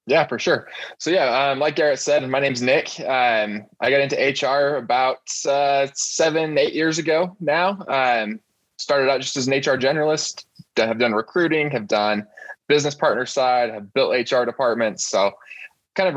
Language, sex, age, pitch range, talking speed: English, male, 20-39, 115-145 Hz, 175 wpm